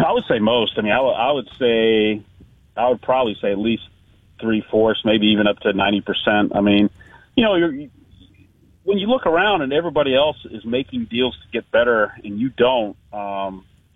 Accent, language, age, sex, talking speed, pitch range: American, English, 40-59, male, 205 wpm, 105-130 Hz